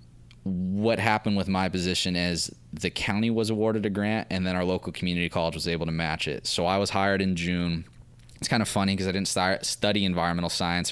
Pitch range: 85-95 Hz